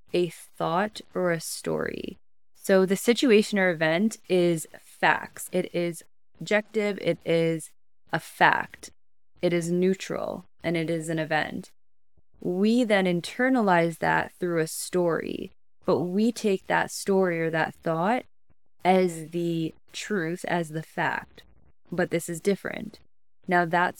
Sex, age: female, 20-39